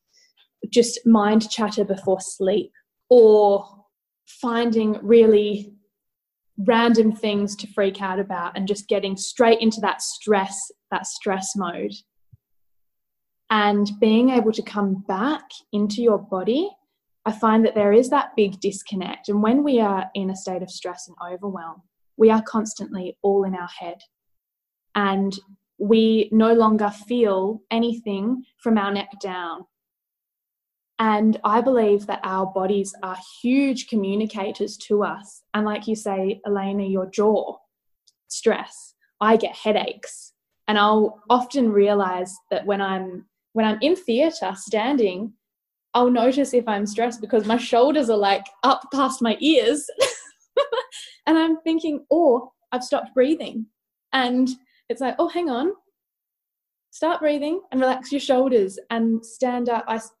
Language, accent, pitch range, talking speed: English, Australian, 200-250 Hz, 140 wpm